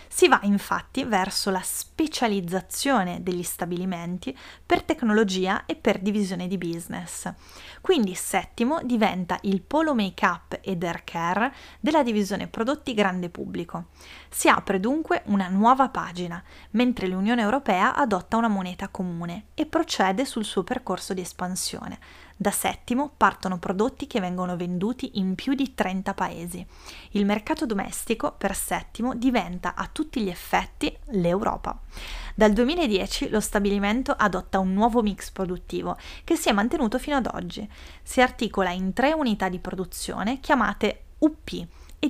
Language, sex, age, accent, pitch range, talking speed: Italian, female, 20-39, native, 185-245 Hz, 140 wpm